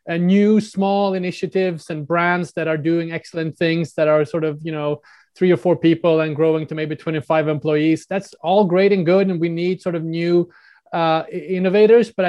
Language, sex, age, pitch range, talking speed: English, male, 20-39, 160-185 Hz, 200 wpm